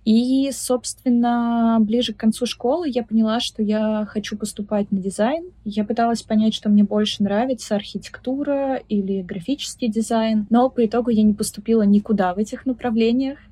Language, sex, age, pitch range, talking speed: Russian, female, 20-39, 205-230 Hz, 155 wpm